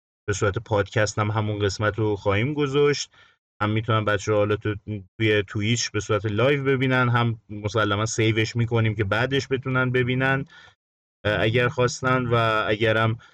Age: 30-49